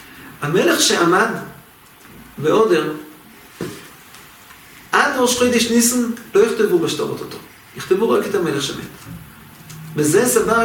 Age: 40-59